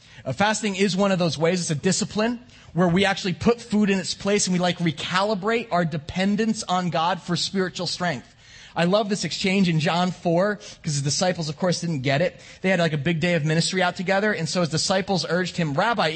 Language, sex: English, male